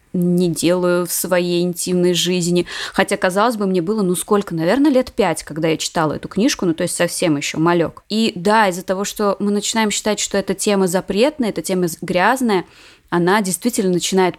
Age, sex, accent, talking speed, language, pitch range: 20-39, female, native, 190 wpm, Russian, 175-205 Hz